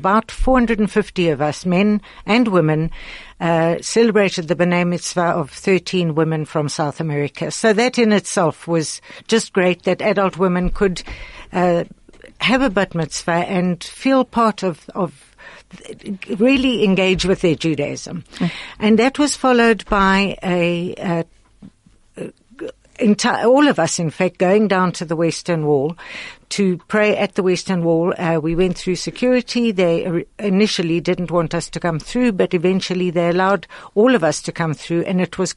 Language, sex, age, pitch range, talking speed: English, female, 60-79, 170-210 Hz, 160 wpm